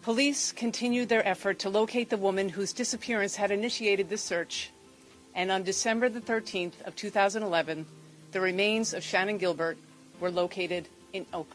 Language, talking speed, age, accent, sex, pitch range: English, 155 wpm, 40-59, American, female, 175-225 Hz